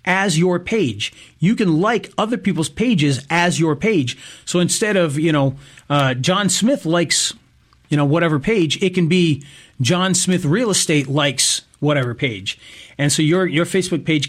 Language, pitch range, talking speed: English, 140-180 Hz, 170 wpm